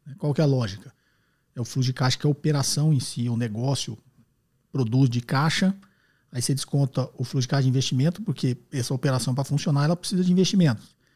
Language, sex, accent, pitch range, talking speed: Portuguese, male, Brazilian, 130-160 Hz, 210 wpm